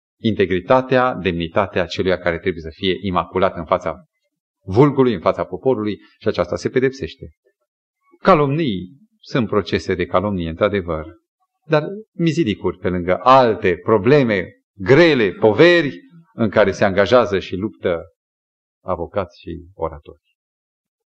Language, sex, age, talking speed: Romanian, male, 40-59, 115 wpm